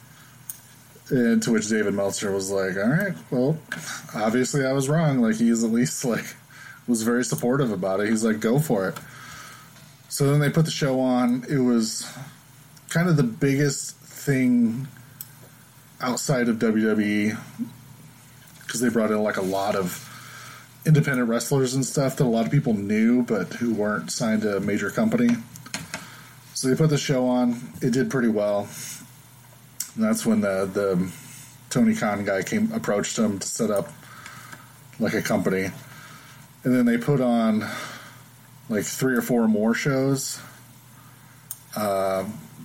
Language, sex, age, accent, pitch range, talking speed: English, male, 20-39, American, 110-140 Hz, 155 wpm